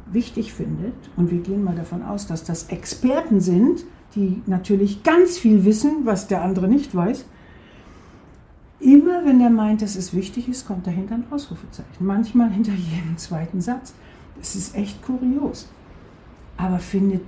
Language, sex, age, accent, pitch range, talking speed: German, female, 60-79, German, 185-260 Hz, 155 wpm